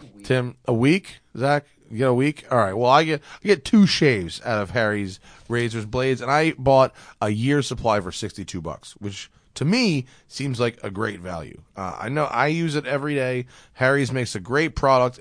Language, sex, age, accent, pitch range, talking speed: English, male, 30-49, American, 110-150 Hz, 215 wpm